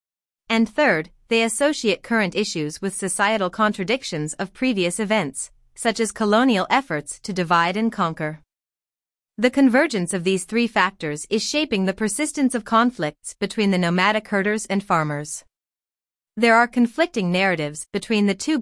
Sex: female